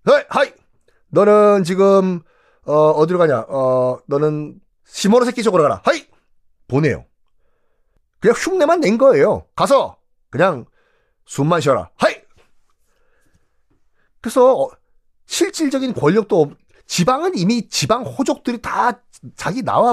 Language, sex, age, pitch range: Korean, male, 40-59, 130-210 Hz